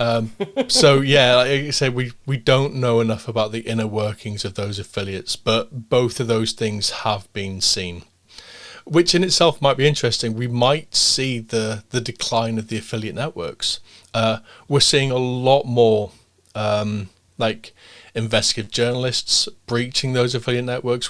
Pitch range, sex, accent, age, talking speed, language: 110-125 Hz, male, British, 30-49, 160 wpm, English